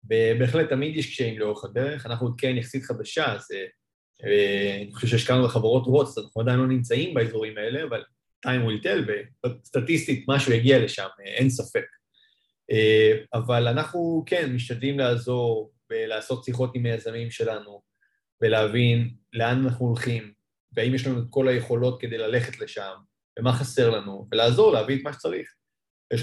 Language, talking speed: English, 135 wpm